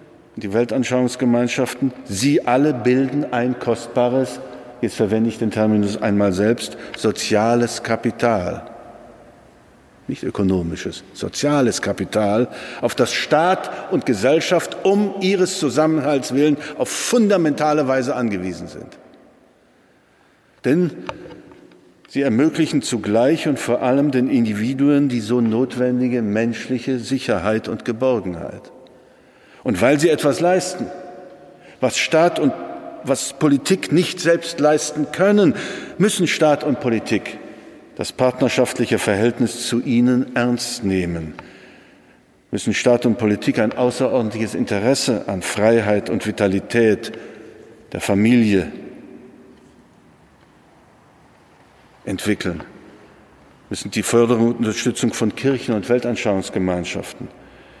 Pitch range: 110-140 Hz